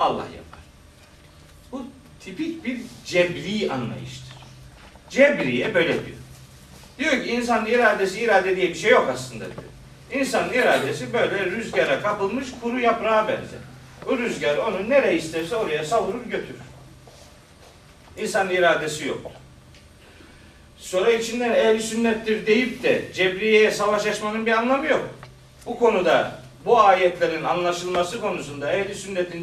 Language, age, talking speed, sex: Turkish, 40-59, 120 wpm, male